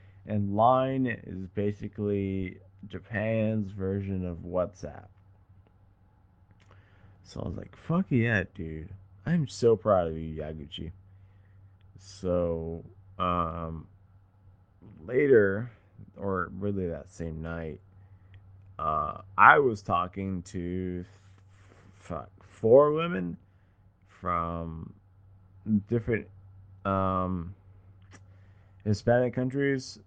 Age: 20-39